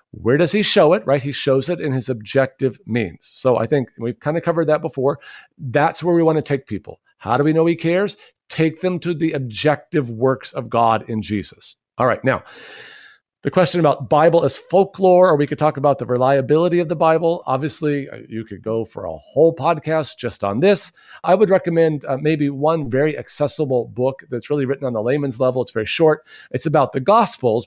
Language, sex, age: English, male, 50-69